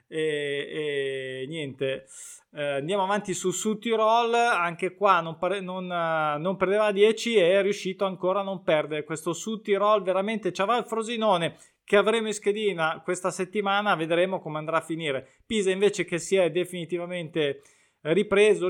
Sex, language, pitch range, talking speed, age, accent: male, Italian, 155-195 Hz, 150 wpm, 20-39, native